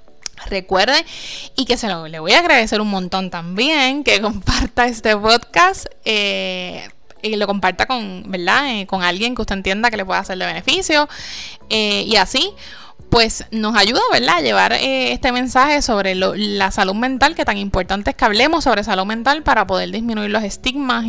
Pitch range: 205-270 Hz